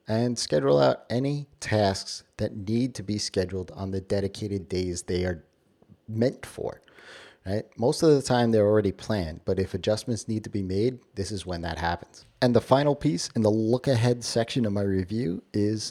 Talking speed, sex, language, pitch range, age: 190 wpm, male, English, 95-120 Hz, 30-49